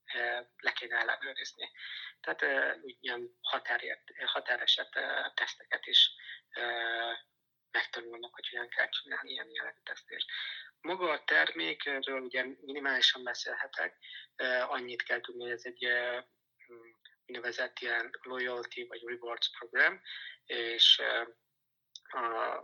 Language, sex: Hungarian, male